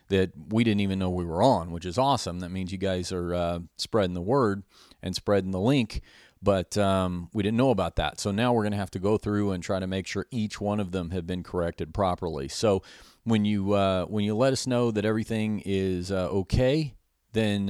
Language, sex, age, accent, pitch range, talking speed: English, male, 40-59, American, 85-105 Hz, 230 wpm